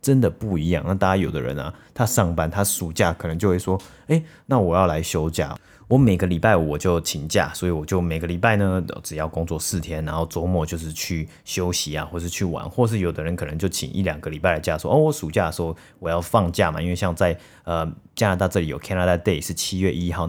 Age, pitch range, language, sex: 30-49, 80-100 Hz, Chinese, male